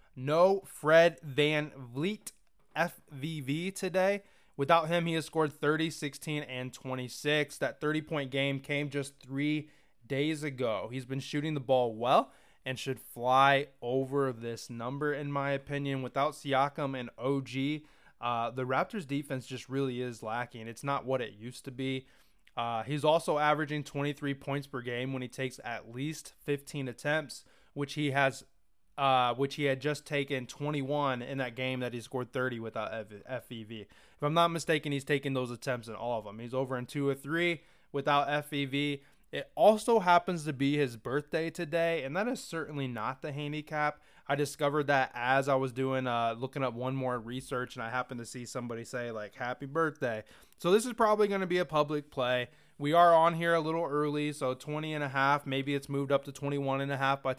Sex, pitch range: male, 130-150 Hz